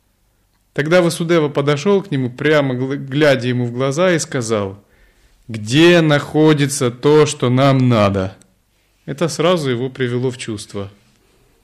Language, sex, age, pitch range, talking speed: Russian, male, 30-49, 110-155 Hz, 125 wpm